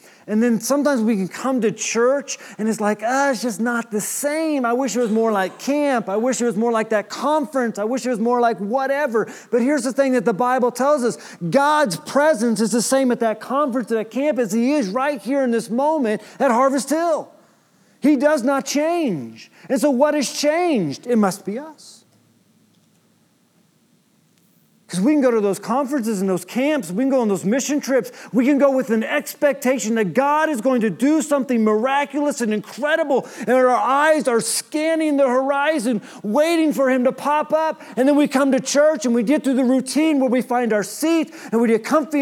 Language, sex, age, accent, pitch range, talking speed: English, male, 40-59, American, 225-285 Hz, 215 wpm